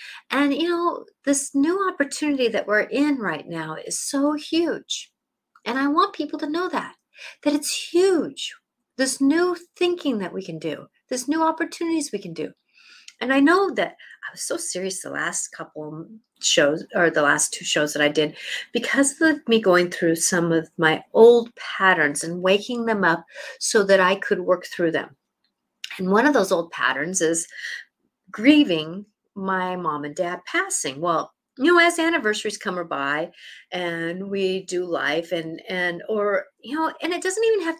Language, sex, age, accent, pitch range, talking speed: English, female, 50-69, American, 185-290 Hz, 180 wpm